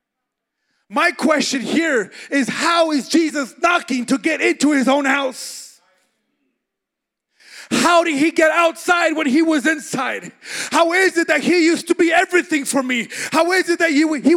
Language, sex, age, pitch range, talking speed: English, male, 30-49, 235-320 Hz, 165 wpm